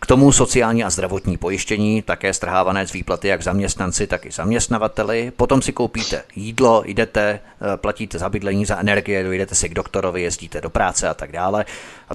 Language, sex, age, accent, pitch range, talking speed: Czech, male, 30-49, native, 100-120 Hz, 180 wpm